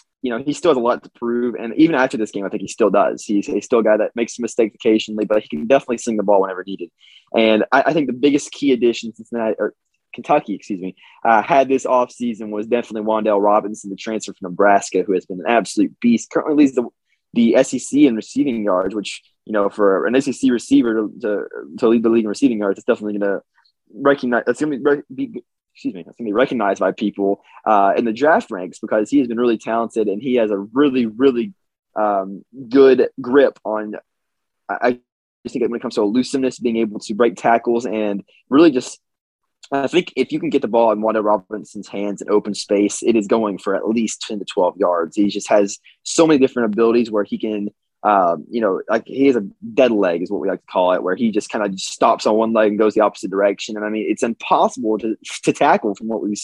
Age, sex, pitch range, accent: 20-39, male, 105-125 Hz, American